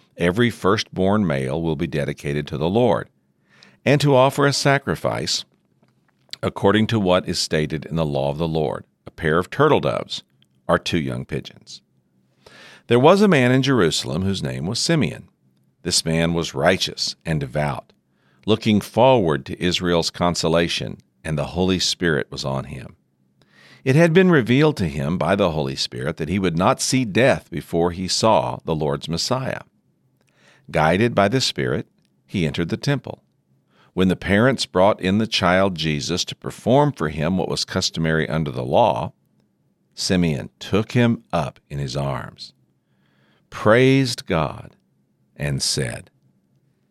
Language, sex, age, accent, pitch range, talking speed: English, male, 50-69, American, 70-110 Hz, 155 wpm